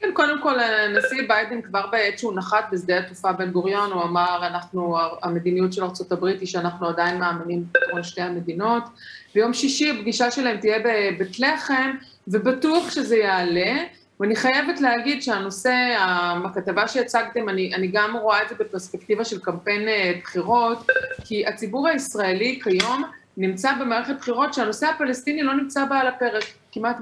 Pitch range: 190-260 Hz